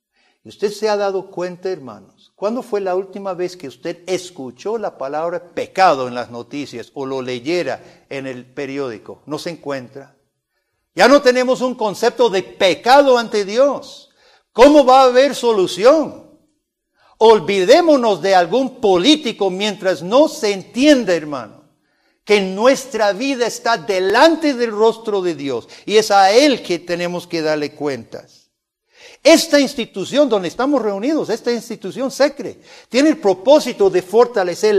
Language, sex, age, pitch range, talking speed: Spanish, male, 60-79, 170-255 Hz, 145 wpm